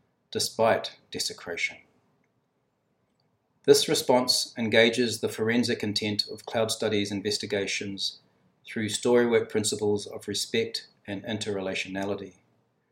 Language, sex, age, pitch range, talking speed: English, male, 40-59, 105-130 Hz, 90 wpm